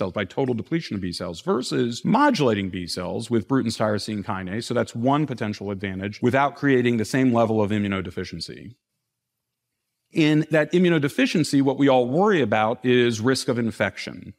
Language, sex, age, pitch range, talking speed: English, male, 40-59, 110-135 Hz, 150 wpm